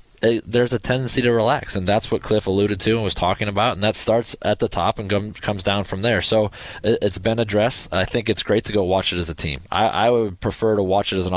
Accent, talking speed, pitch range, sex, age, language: American, 260 wpm, 95-110 Hz, male, 20-39, English